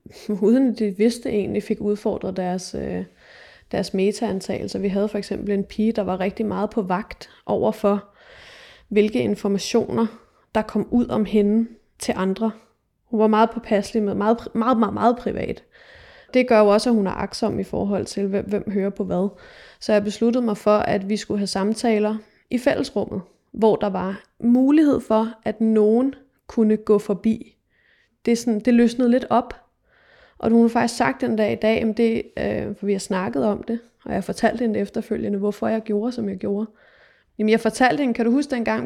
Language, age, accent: Danish, 20-39, native